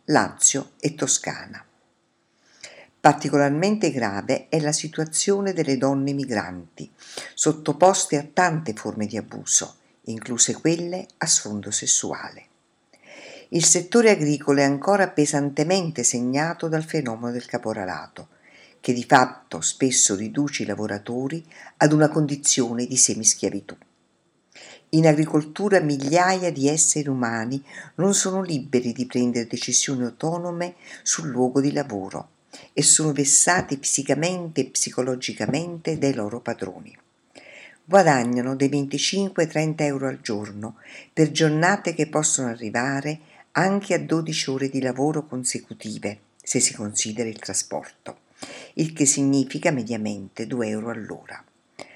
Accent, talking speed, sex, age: native, 115 wpm, female, 50-69